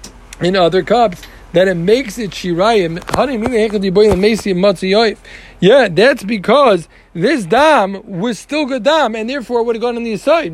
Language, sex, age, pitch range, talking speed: English, male, 40-59, 185-240 Hz, 150 wpm